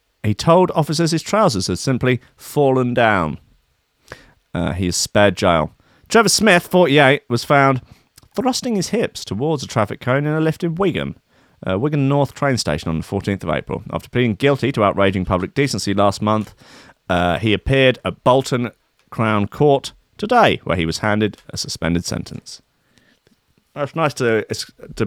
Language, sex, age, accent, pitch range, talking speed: English, male, 30-49, British, 90-130 Hz, 165 wpm